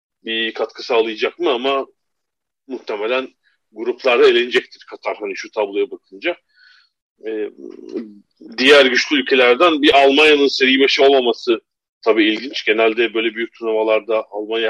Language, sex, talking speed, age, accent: Turkish, male, 120 wpm, 40-59, native